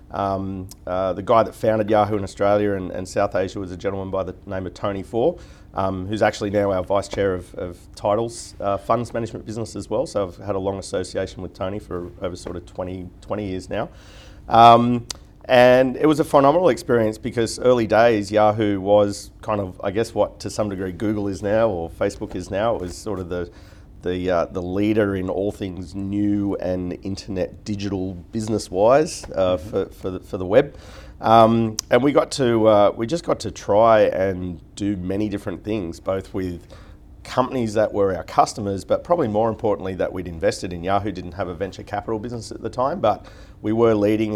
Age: 40-59